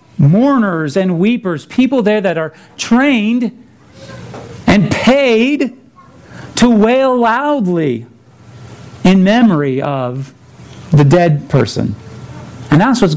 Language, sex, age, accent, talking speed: English, male, 40-59, American, 100 wpm